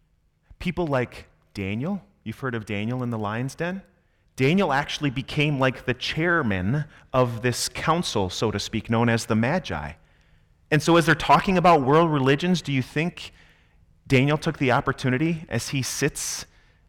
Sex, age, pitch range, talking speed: male, 30-49, 100-140 Hz, 160 wpm